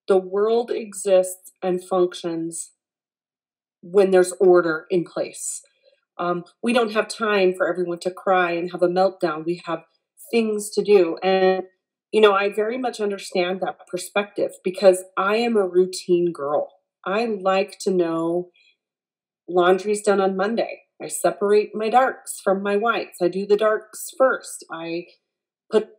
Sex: female